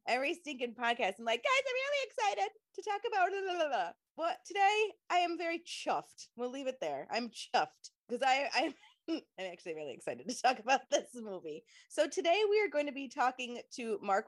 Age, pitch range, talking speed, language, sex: 20-39, 185-280 Hz, 200 wpm, English, female